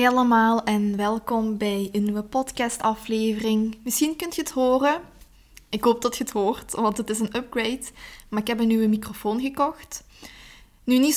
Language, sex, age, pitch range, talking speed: Dutch, female, 20-39, 215-250 Hz, 185 wpm